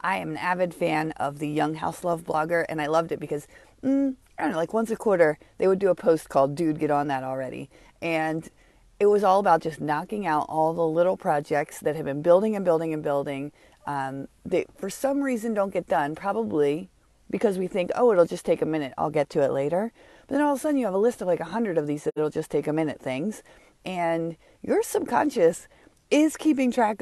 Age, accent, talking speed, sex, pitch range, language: 40-59, American, 235 wpm, female, 155-220 Hz, English